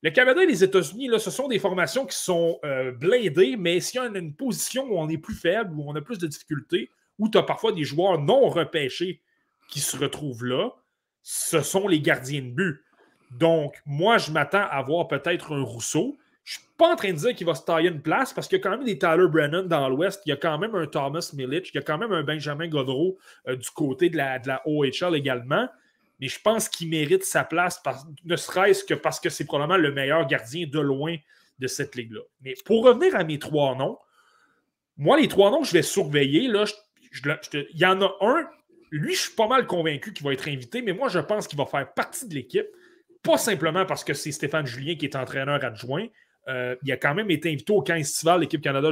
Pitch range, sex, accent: 145-205 Hz, male, Canadian